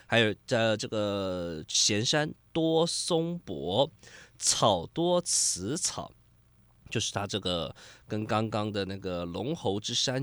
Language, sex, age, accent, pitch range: Chinese, male, 20-39, native, 100-140 Hz